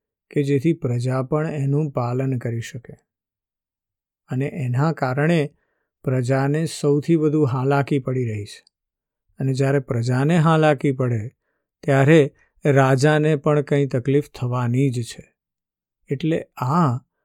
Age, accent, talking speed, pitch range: 50-69, native, 90 wpm, 120-150 Hz